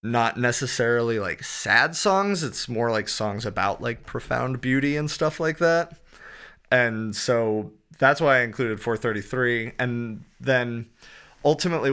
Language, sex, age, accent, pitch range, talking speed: English, male, 30-49, American, 110-135 Hz, 135 wpm